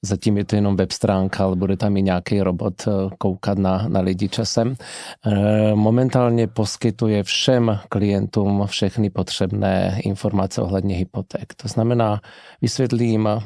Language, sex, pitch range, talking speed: Slovak, male, 100-115 Hz, 130 wpm